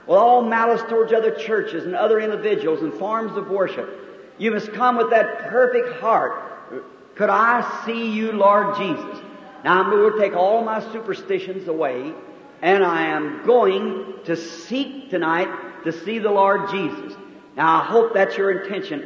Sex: male